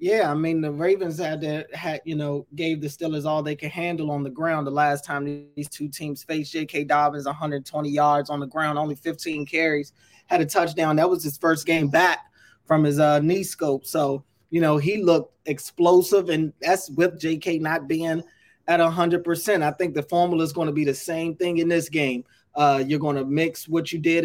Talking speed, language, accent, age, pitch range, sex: 215 wpm, English, American, 20-39, 145-165 Hz, male